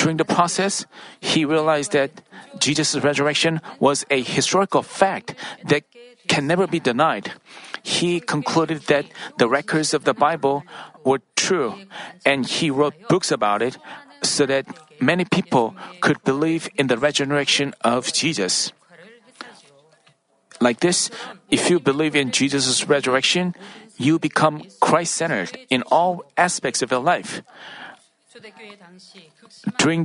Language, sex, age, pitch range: Korean, male, 40-59, 145-180 Hz